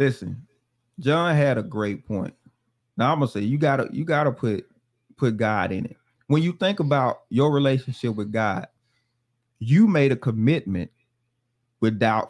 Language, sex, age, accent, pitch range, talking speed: English, male, 30-49, American, 120-150 Hz, 165 wpm